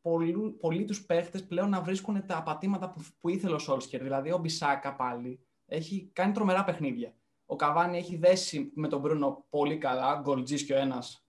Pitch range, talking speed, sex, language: 140-180 Hz, 175 wpm, male, Greek